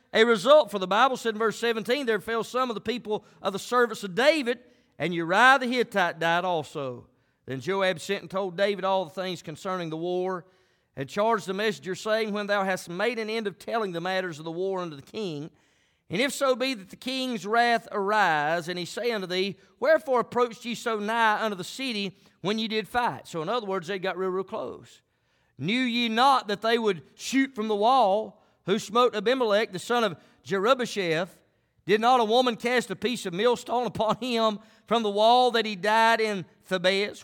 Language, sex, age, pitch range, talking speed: English, male, 40-59, 185-250 Hz, 210 wpm